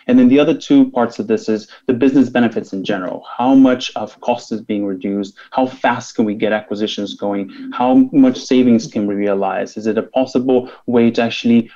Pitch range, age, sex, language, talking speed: 110-145 Hz, 20-39, male, English, 210 wpm